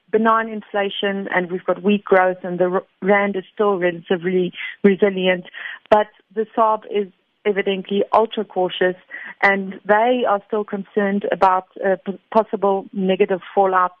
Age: 30-49